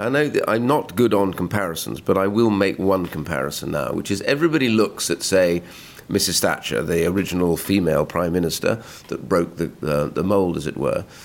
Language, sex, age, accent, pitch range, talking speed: English, male, 50-69, British, 90-115 Hz, 190 wpm